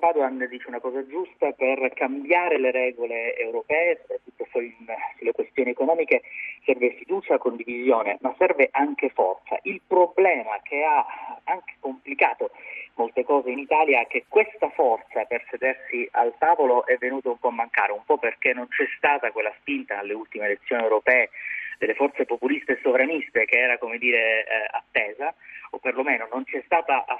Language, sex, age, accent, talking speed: Italian, male, 30-49, native, 160 wpm